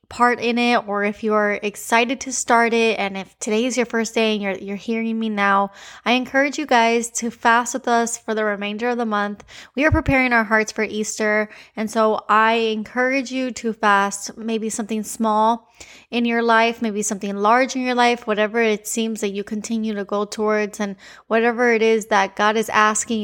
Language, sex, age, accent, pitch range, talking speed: English, female, 20-39, American, 210-240 Hz, 210 wpm